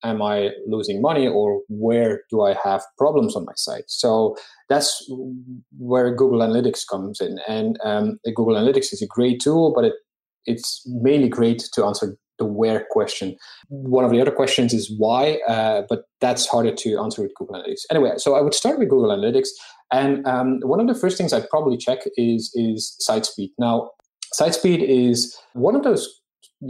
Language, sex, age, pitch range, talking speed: English, male, 30-49, 115-155 Hz, 185 wpm